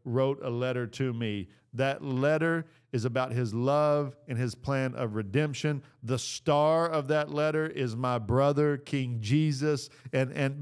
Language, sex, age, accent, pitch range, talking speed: English, male, 50-69, American, 115-135 Hz, 160 wpm